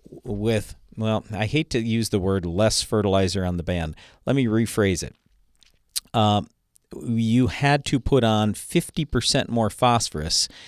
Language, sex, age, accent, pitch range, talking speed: English, male, 50-69, American, 95-130 Hz, 145 wpm